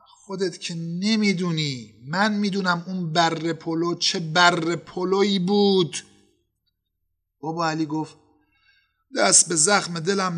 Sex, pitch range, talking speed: male, 145-190 Hz, 110 wpm